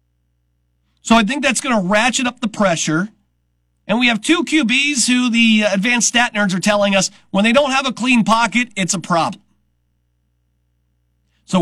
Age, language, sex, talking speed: 40-59, English, male, 175 wpm